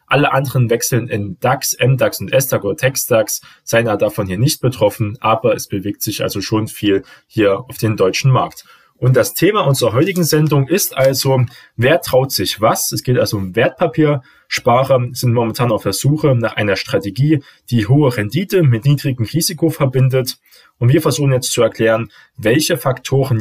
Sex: male